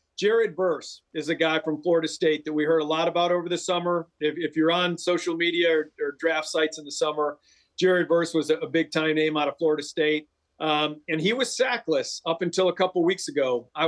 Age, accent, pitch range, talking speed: 40-59, American, 155-175 Hz, 240 wpm